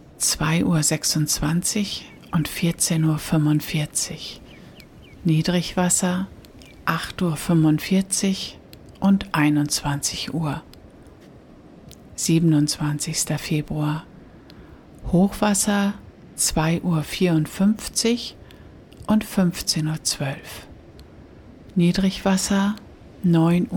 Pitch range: 150-190 Hz